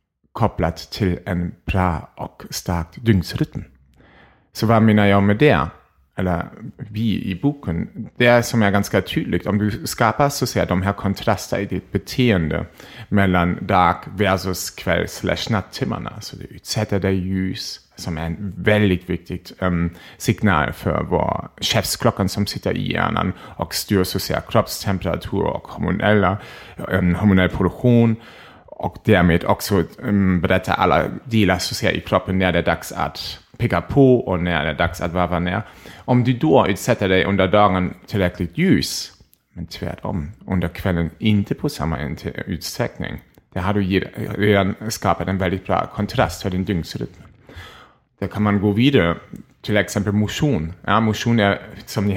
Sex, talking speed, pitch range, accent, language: male, 155 wpm, 90-110 Hz, German, Swedish